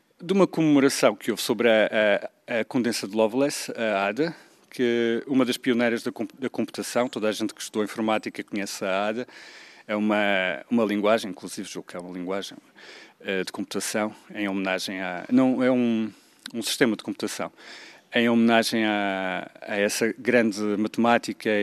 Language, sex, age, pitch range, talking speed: Portuguese, male, 40-59, 110-135 Hz, 160 wpm